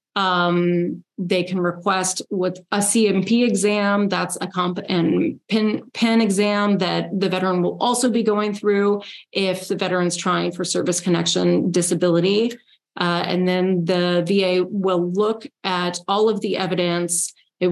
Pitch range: 180-215 Hz